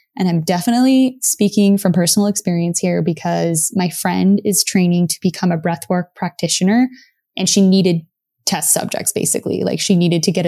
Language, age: English, 20-39